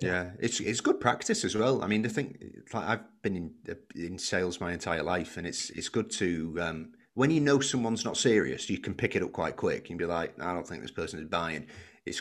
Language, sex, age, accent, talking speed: English, male, 30-49, British, 250 wpm